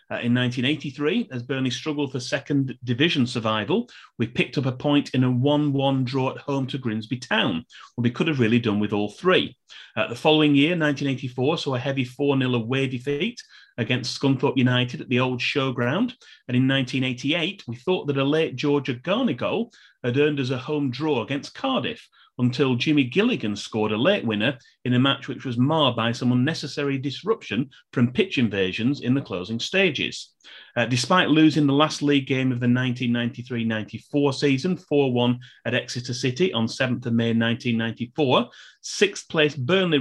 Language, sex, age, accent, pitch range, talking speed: English, male, 30-49, British, 120-145 Hz, 170 wpm